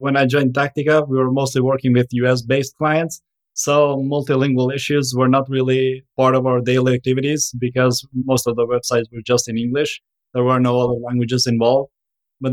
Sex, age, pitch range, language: male, 20-39, 125-140 Hz, English